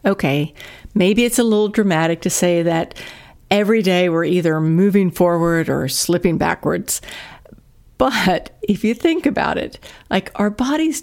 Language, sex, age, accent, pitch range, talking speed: English, female, 60-79, American, 170-215 Hz, 145 wpm